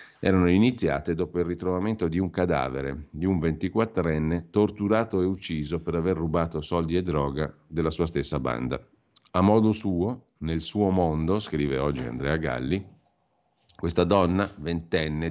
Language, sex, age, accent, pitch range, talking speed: Italian, male, 50-69, native, 80-95 Hz, 145 wpm